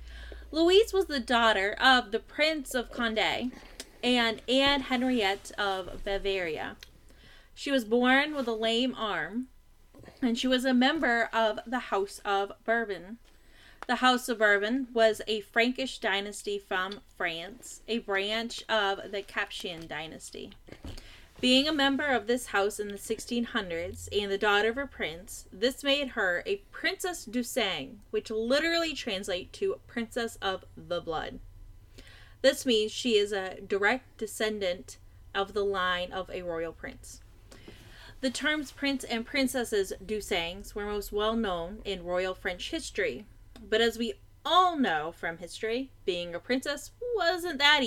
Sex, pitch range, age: female, 195-260 Hz, 10-29